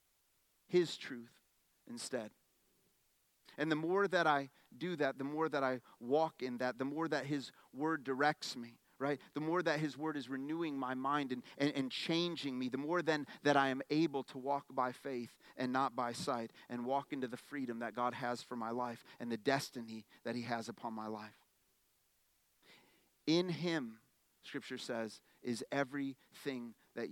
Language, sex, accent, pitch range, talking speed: English, male, American, 130-210 Hz, 180 wpm